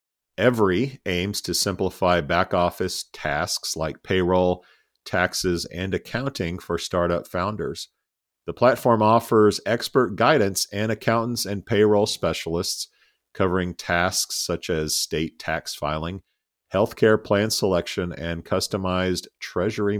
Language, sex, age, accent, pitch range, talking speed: English, male, 50-69, American, 85-105 Hz, 115 wpm